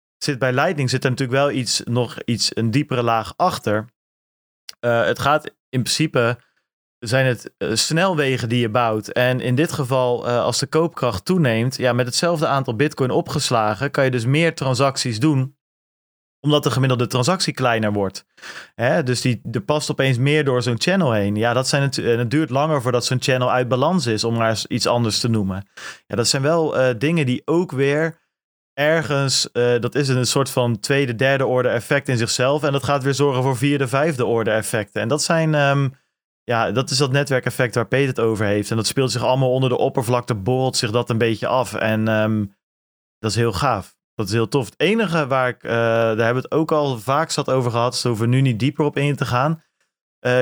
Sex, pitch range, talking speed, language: male, 115-145 Hz, 200 wpm, Dutch